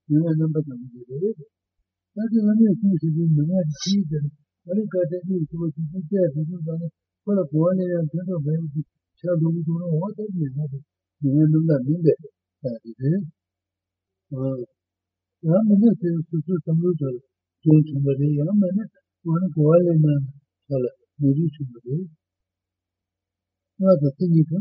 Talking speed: 40 wpm